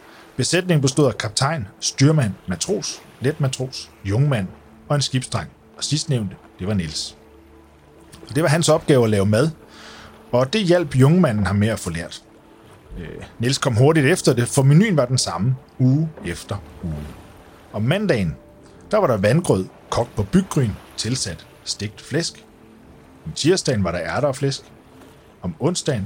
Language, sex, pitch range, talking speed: Danish, male, 105-155 Hz, 155 wpm